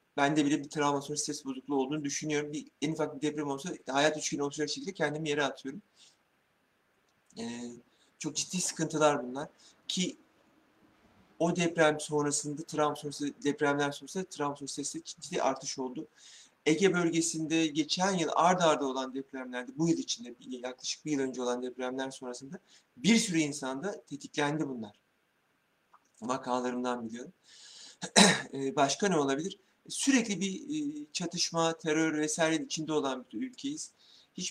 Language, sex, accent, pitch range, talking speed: Turkish, male, native, 135-170 Hz, 135 wpm